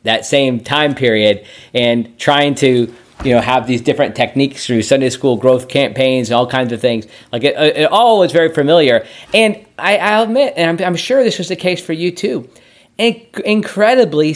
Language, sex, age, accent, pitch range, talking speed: English, male, 40-59, American, 130-175 Hz, 190 wpm